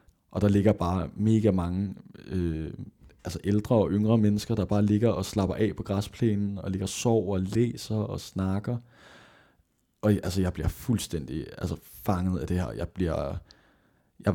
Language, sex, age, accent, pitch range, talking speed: Danish, male, 20-39, native, 90-110 Hz, 170 wpm